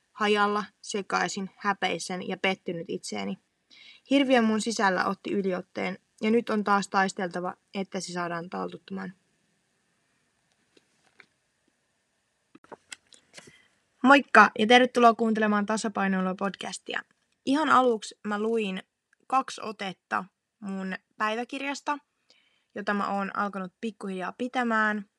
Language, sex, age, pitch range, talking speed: Finnish, female, 20-39, 190-225 Hz, 95 wpm